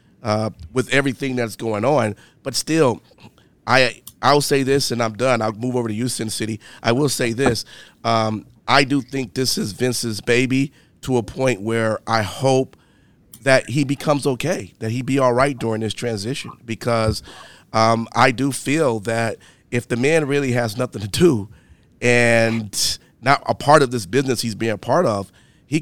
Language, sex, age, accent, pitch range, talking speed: English, male, 40-59, American, 115-140 Hz, 180 wpm